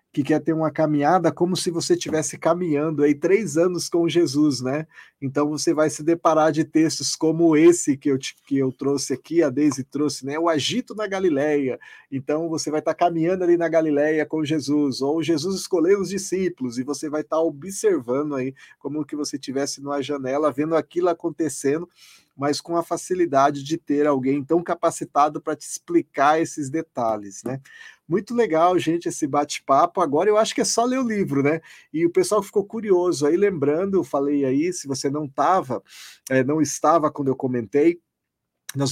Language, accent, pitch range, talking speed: Portuguese, Brazilian, 145-180 Hz, 180 wpm